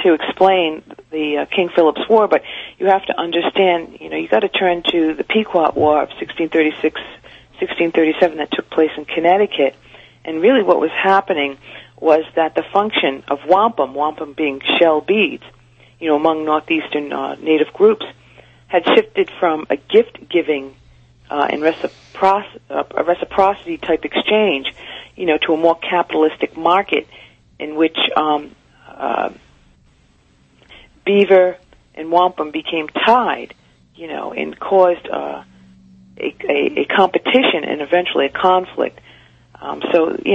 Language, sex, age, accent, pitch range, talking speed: English, female, 50-69, American, 130-185 Hz, 145 wpm